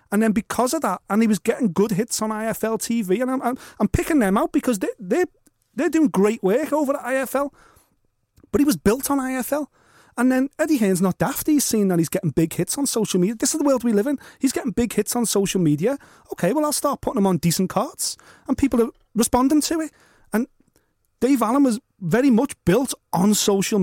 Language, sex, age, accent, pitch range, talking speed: English, male, 30-49, British, 205-265 Hz, 230 wpm